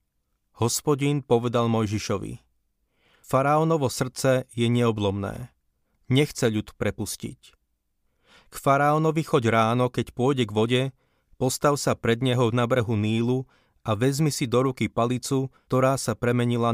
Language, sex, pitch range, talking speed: Slovak, male, 115-135 Hz, 120 wpm